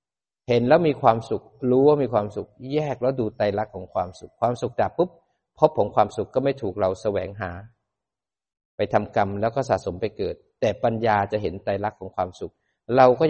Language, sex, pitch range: Thai, male, 105-130 Hz